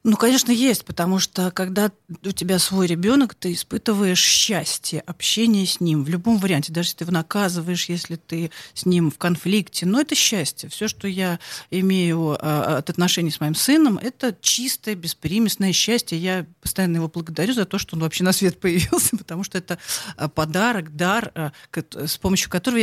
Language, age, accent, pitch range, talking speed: Russian, 40-59, native, 165-215 Hz, 175 wpm